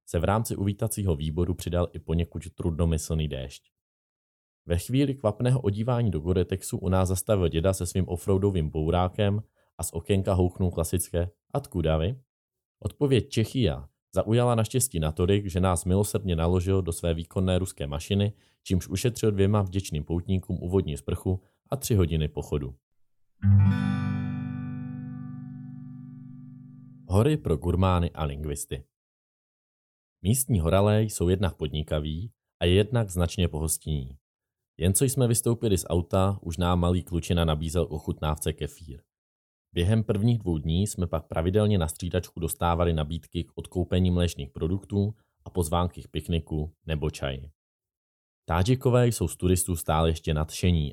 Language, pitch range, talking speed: Czech, 80-105 Hz, 130 wpm